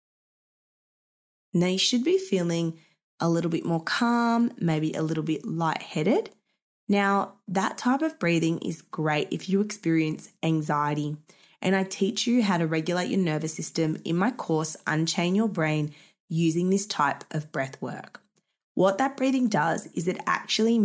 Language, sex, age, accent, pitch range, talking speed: English, female, 20-39, Australian, 155-205 Hz, 160 wpm